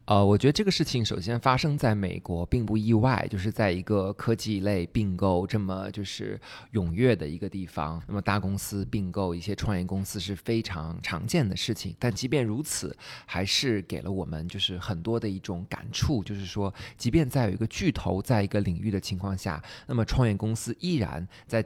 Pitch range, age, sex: 95-120 Hz, 20-39, male